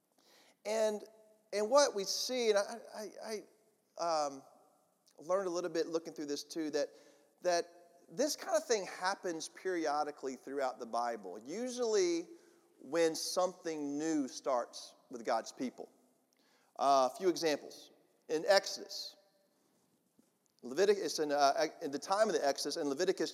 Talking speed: 140 wpm